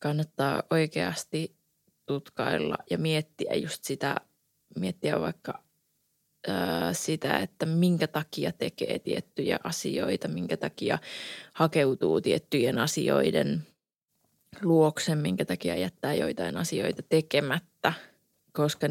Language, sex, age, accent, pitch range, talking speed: Finnish, female, 20-39, native, 145-165 Hz, 95 wpm